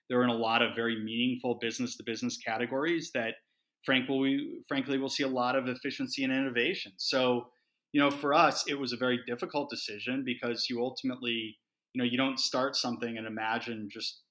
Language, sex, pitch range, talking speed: English, male, 115-130 Hz, 195 wpm